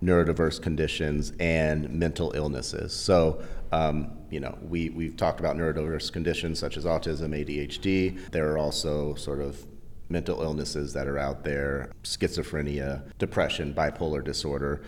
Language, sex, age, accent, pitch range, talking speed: English, male, 30-49, American, 75-85 Hz, 135 wpm